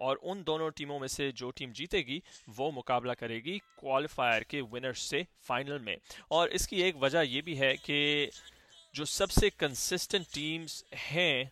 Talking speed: 160 wpm